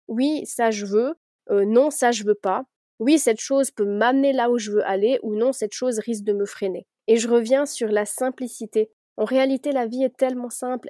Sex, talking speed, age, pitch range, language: female, 225 wpm, 20-39, 215-255 Hz, French